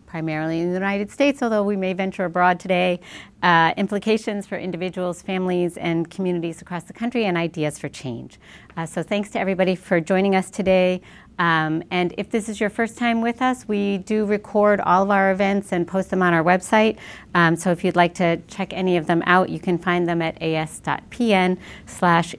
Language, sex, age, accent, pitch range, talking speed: English, female, 40-59, American, 170-205 Hz, 200 wpm